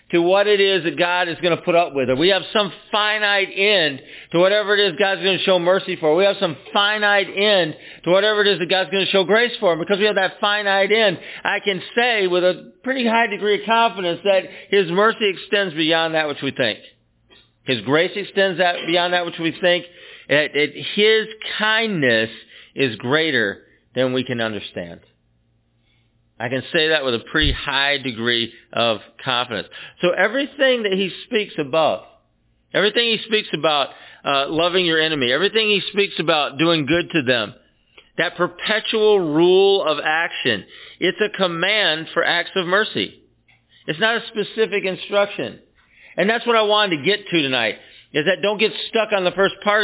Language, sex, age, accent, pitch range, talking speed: English, male, 50-69, American, 160-210 Hz, 185 wpm